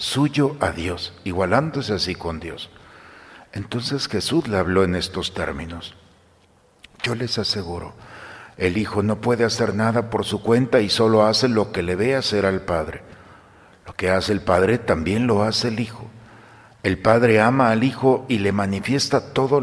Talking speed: 170 wpm